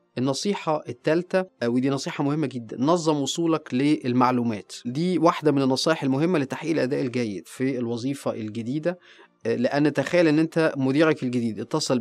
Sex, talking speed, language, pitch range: male, 135 wpm, Arabic, 125-155 Hz